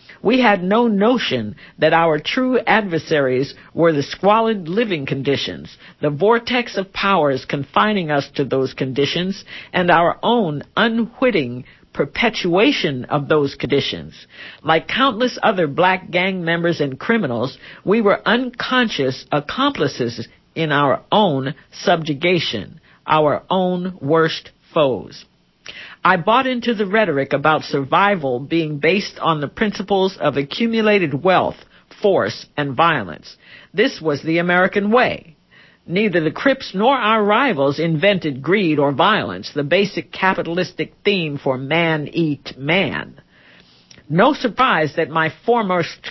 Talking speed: 125 wpm